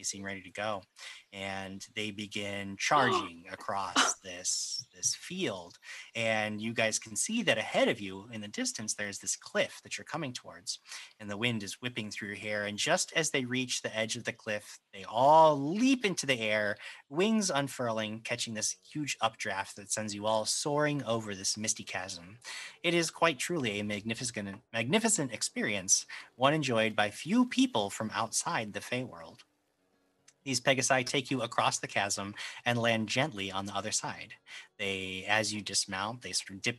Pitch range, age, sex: 100-130 Hz, 30-49, male